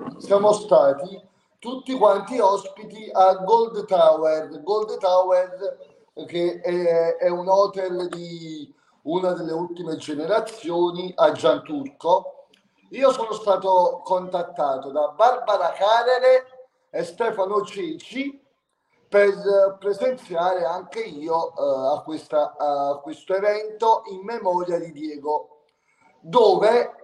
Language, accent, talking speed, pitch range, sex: Italian, native, 105 wpm, 180-245 Hz, male